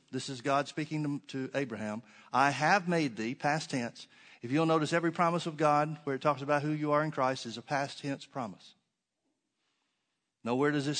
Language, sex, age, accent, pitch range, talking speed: English, male, 50-69, American, 130-160 Hz, 195 wpm